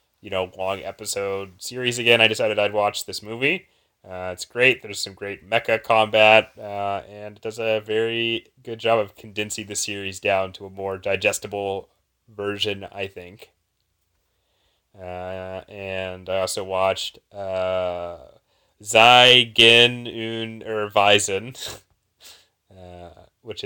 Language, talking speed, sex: English, 130 wpm, male